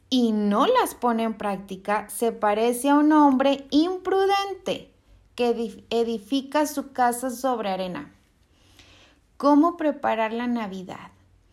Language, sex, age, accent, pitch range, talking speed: Spanish, female, 30-49, Mexican, 210-265 Hz, 115 wpm